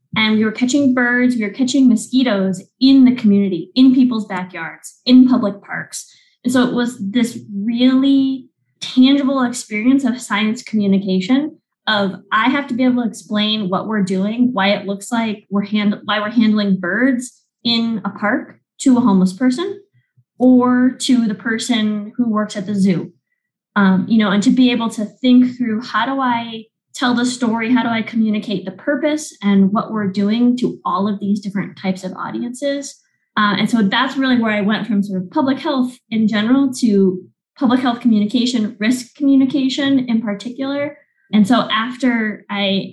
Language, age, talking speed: English, 20-39, 180 wpm